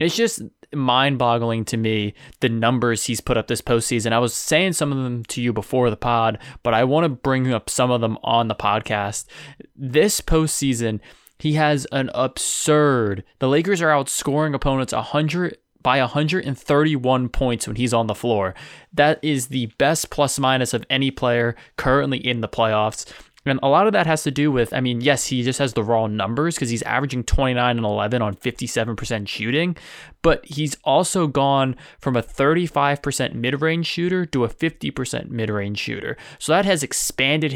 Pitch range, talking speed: 115-145 Hz, 175 wpm